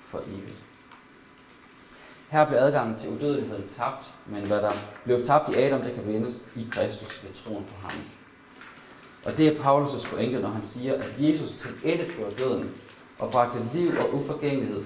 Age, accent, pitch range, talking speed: 30-49, native, 105-140 Hz, 175 wpm